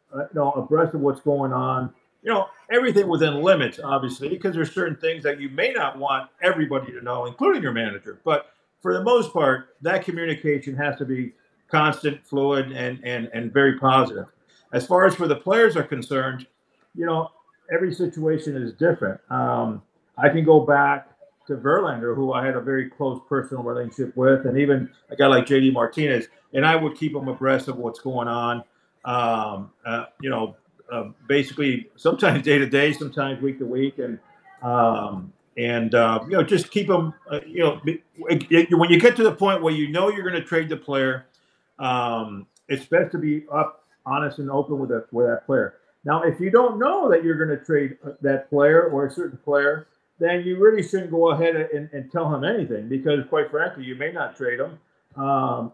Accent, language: American, English